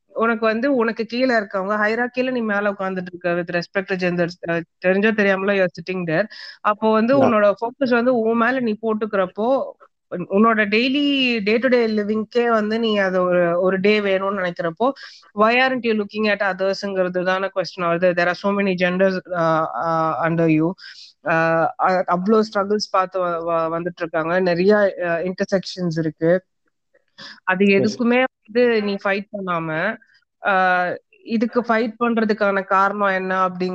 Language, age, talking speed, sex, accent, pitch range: Tamil, 20-39, 30 wpm, female, native, 180-220 Hz